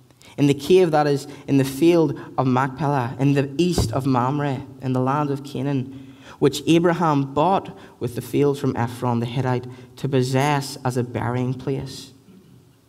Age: 20-39